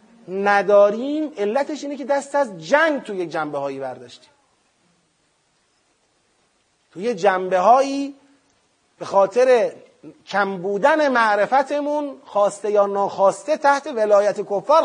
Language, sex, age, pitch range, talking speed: Persian, male, 30-49, 205-305 Hz, 95 wpm